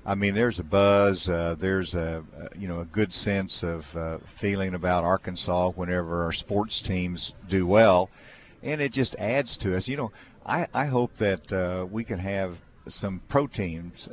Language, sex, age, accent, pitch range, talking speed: English, male, 50-69, American, 90-110 Hz, 185 wpm